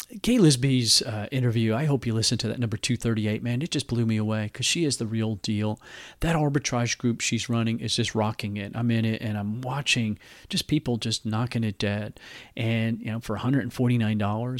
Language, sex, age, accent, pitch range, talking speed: English, male, 40-59, American, 110-125 Hz, 200 wpm